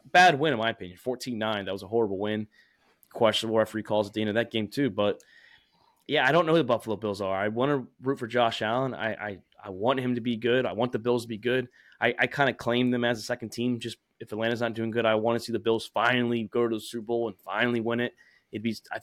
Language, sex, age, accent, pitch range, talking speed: English, male, 20-39, American, 110-125 Hz, 280 wpm